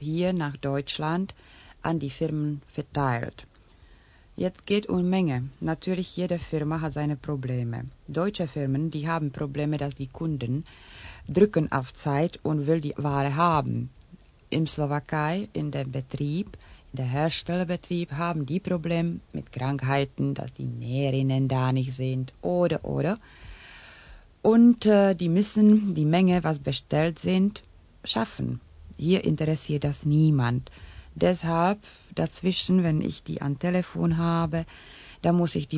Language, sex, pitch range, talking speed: Bulgarian, female, 135-175 Hz, 135 wpm